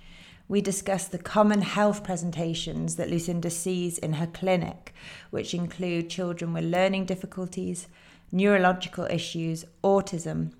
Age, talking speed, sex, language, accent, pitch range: 30-49, 120 wpm, female, English, British, 160-185 Hz